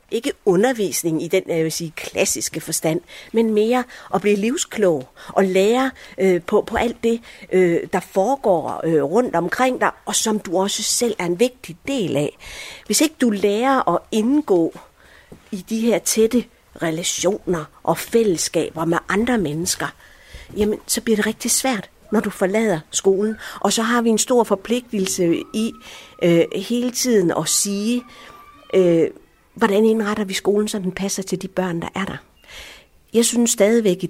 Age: 50-69